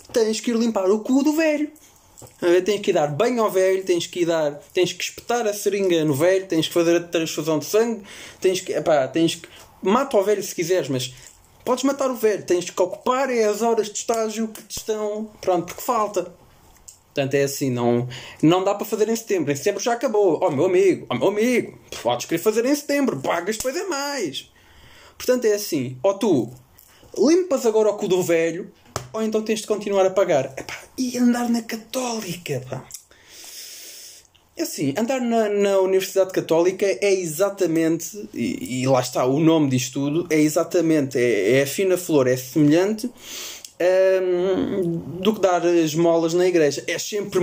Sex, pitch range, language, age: male, 155-220 Hz, Portuguese, 20-39